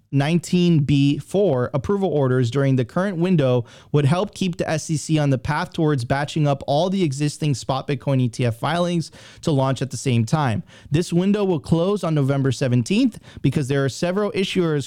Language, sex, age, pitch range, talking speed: English, male, 30-49, 130-170 Hz, 175 wpm